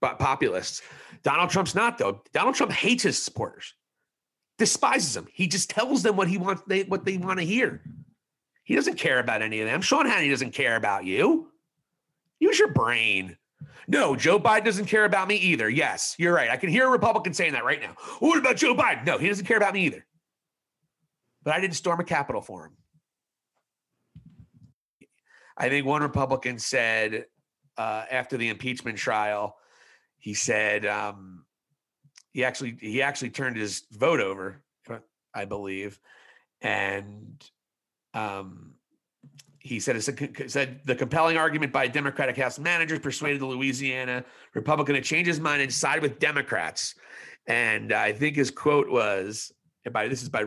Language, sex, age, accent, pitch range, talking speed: English, male, 30-49, American, 115-170 Hz, 165 wpm